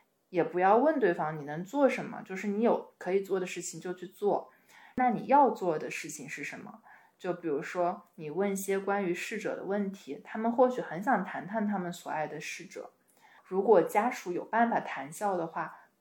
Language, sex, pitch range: Chinese, female, 180-230 Hz